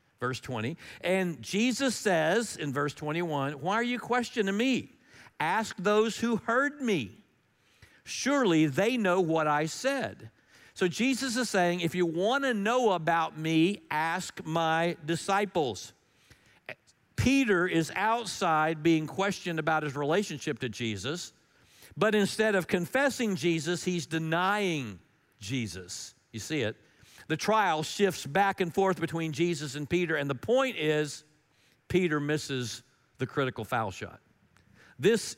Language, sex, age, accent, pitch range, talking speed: English, male, 50-69, American, 150-200 Hz, 135 wpm